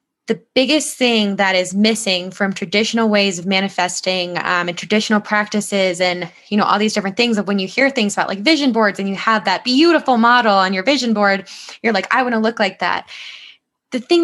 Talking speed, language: 215 wpm, English